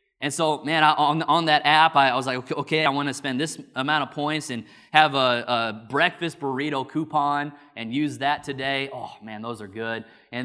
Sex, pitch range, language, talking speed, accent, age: male, 125-165 Hz, English, 220 wpm, American, 20-39